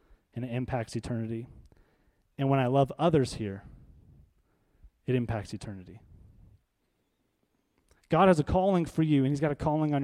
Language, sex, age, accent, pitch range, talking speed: English, male, 30-49, American, 120-155 Hz, 150 wpm